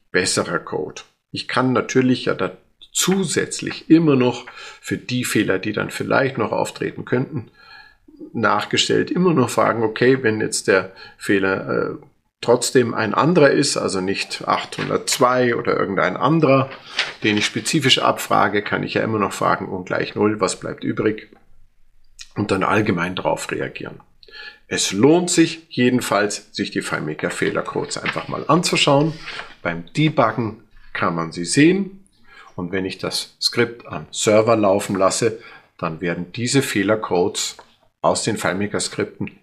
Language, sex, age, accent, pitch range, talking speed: German, male, 50-69, German, 100-135 Hz, 140 wpm